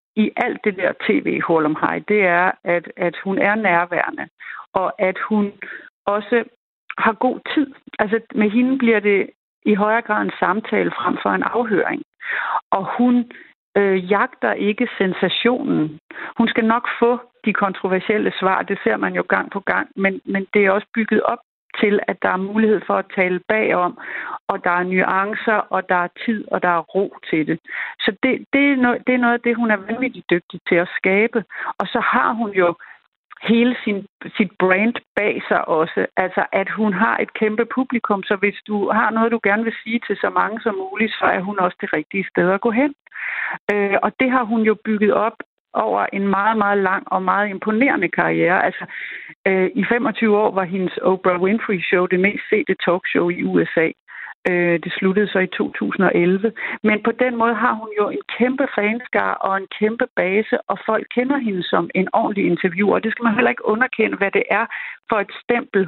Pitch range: 190-235 Hz